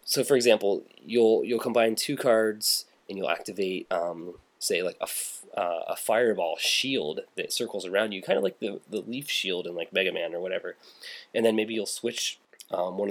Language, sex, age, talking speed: English, male, 20-39, 200 wpm